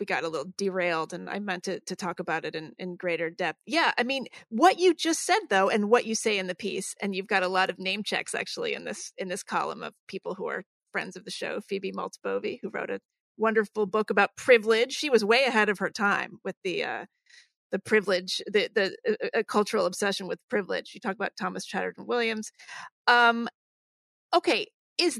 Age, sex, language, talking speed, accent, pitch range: 30-49, female, English, 215 wpm, American, 195-295 Hz